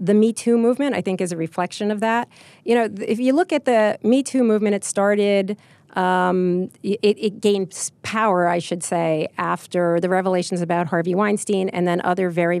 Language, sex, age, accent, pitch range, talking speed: English, female, 40-59, American, 175-225 Hz, 195 wpm